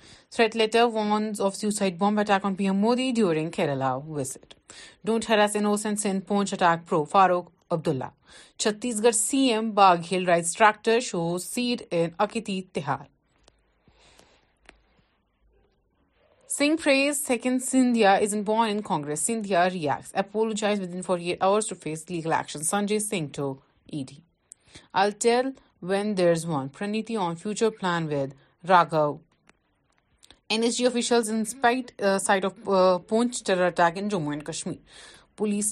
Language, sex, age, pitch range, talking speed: Urdu, female, 30-49, 170-220 Hz, 140 wpm